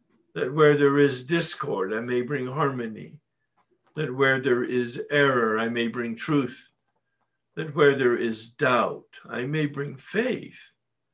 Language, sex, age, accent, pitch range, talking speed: English, male, 60-79, American, 120-160 Hz, 145 wpm